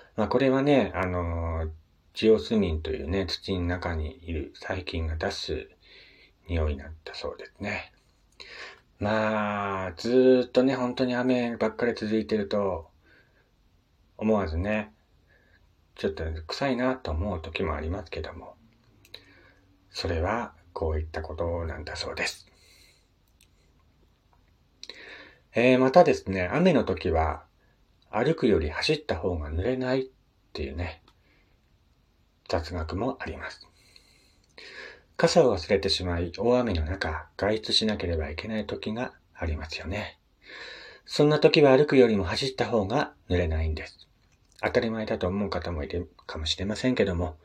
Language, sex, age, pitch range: Japanese, male, 40-59, 80-110 Hz